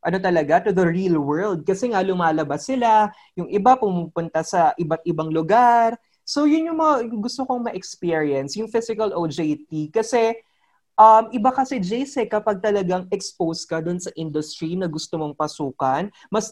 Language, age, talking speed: English, 20-39, 160 wpm